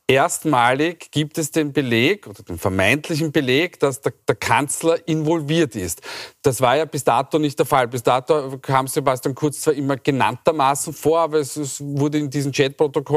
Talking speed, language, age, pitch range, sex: 180 wpm, German, 40-59, 140-160 Hz, male